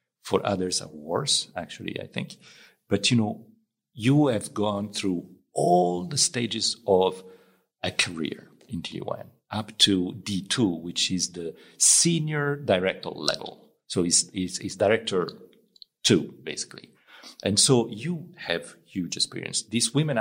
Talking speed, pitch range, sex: 140 wpm, 90-120 Hz, male